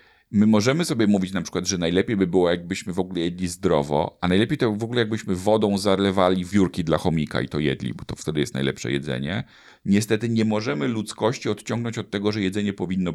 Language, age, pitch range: Polish, 40-59, 90-115 Hz